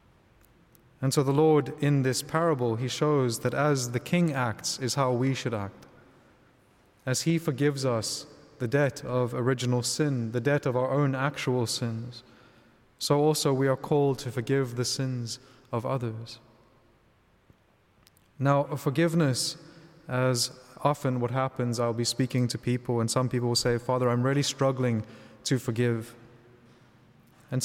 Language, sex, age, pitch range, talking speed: English, male, 20-39, 120-140 Hz, 150 wpm